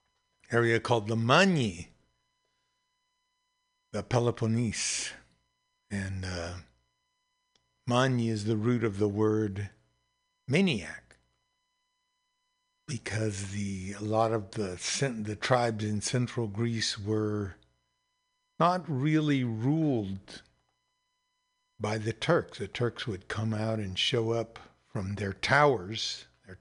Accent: American